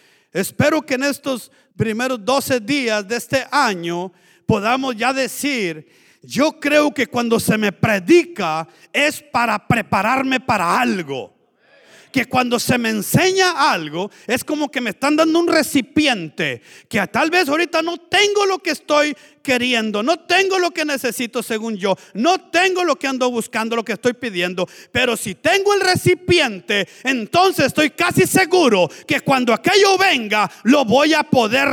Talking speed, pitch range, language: 155 wpm, 230-305 Hz, Spanish